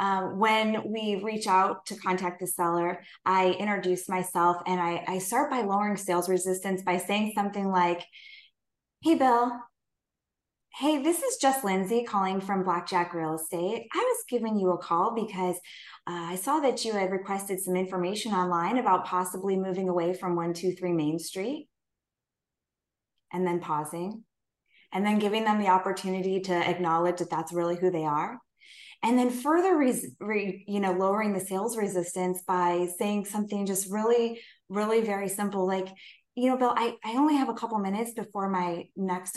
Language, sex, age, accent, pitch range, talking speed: English, female, 20-39, American, 180-225 Hz, 170 wpm